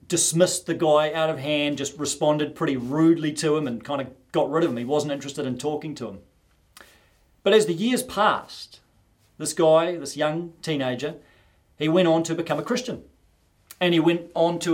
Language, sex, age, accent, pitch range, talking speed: English, male, 40-59, Australian, 120-185 Hz, 195 wpm